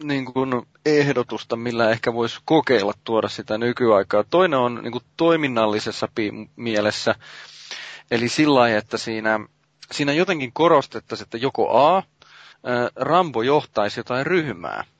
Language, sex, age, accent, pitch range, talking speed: Finnish, male, 30-49, native, 110-150 Hz, 120 wpm